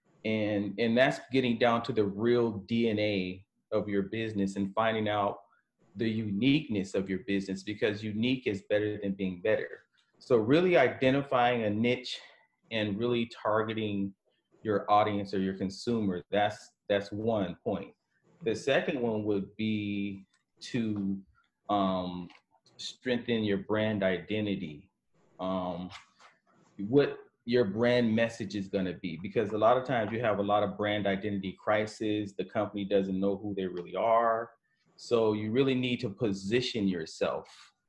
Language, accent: English, American